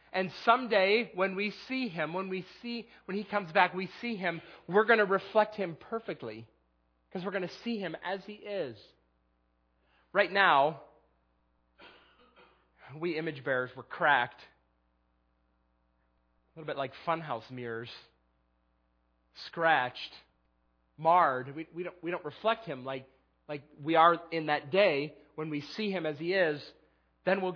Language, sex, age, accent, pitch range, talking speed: English, male, 40-59, American, 145-200 Hz, 145 wpm